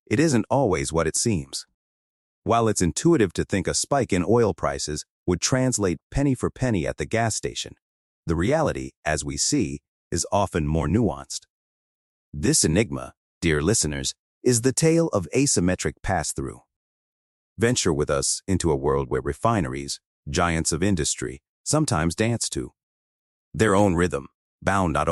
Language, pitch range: English, 75-110 Hz